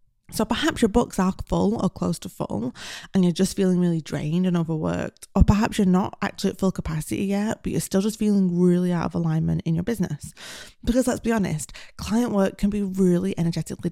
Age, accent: 20-39, British